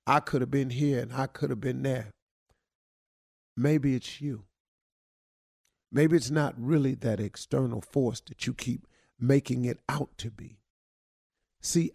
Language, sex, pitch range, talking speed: English, male, 110-145 Hz, 150 wpm